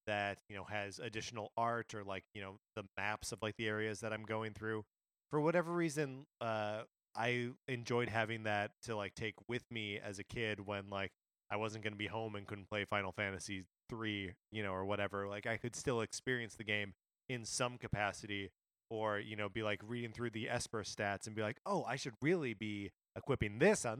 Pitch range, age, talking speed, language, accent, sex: 105-125 Hz, 20-39, 215 wpm, English, American, male